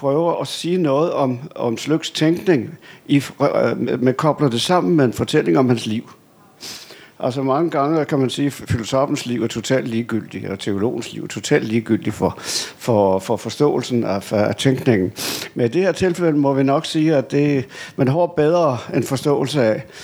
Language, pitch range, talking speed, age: Danish, 120-155 Hz, 185 wpm, 60-79